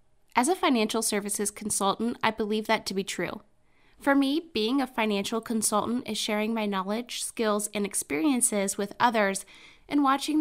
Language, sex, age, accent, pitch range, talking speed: English, female, 10-29, American, 205-245 Hz, 160 wpm